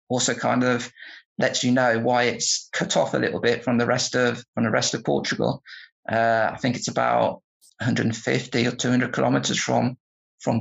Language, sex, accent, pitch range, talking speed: English, male, British, 115-125 Hz, 185 wpm